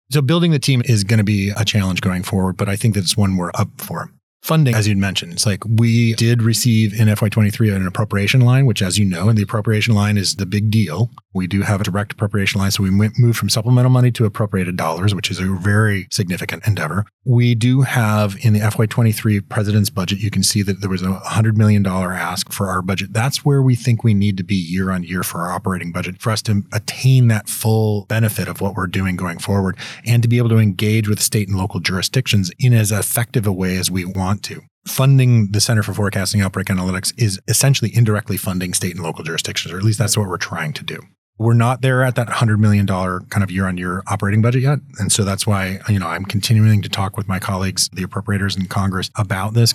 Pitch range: 95-115 Hz